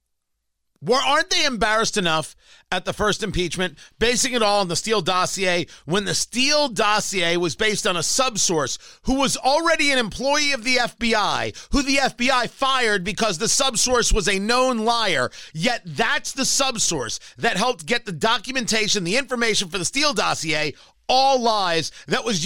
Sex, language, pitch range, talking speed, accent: male, English, 190-260 Hz, 170 wpm, American